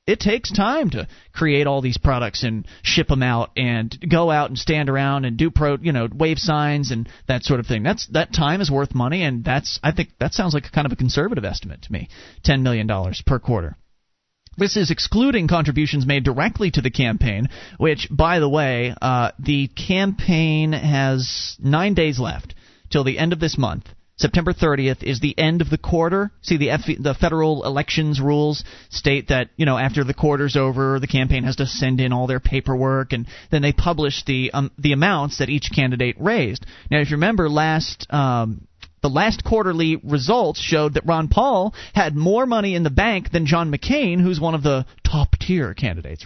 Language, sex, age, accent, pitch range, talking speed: English, male, 30-49, American, 130-165 Hz, 200 wpm